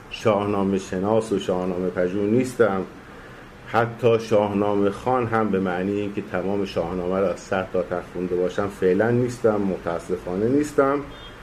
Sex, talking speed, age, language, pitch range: male, 120 wpm, 50-69, Persian, 95-120 Hz